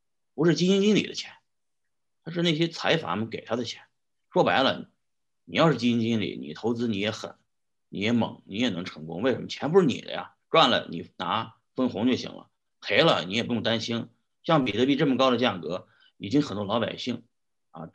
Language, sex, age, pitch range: Chinese, male, 30-49, 110-125 Hz